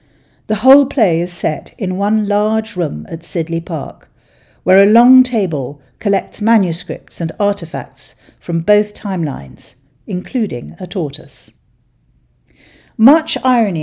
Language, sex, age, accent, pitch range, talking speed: English, female, 50-69, British, 155-215 Hz, 120 wpm